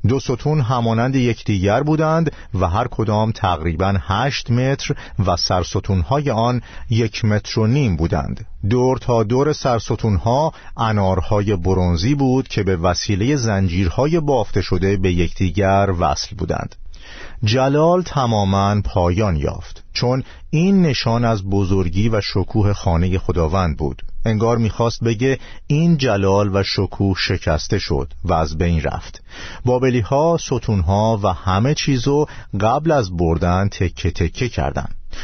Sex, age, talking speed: male, 50-69, 130 wpm